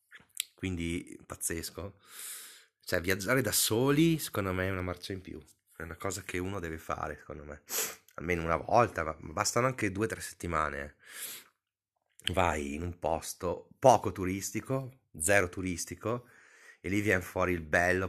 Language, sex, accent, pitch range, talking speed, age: Italian, male, native, 85-110 Hz, 150 wpm, 30-49